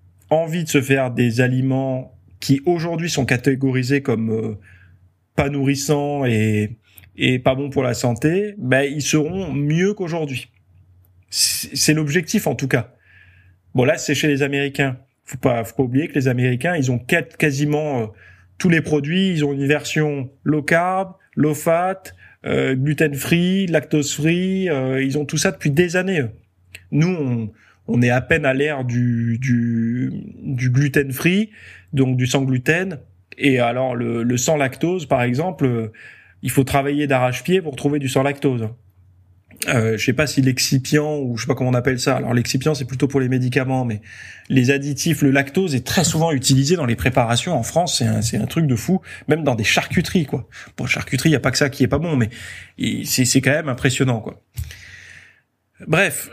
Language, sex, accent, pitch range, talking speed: French, male, French, 120-150 Hz, 180 wpm